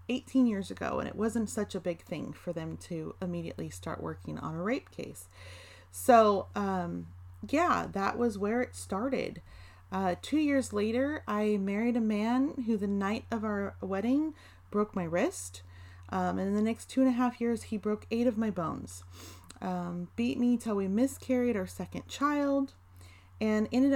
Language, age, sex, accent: English, 30-49, female, American